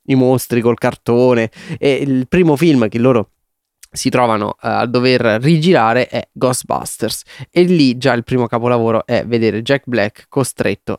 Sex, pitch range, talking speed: male, 120-150 Hz, 155 wpm